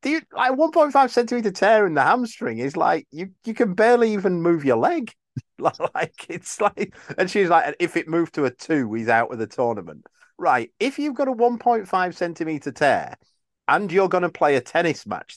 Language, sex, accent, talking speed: English, male, British, 200 wpm